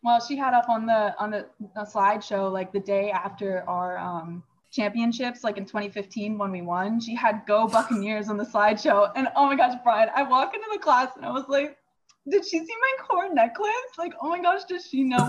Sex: female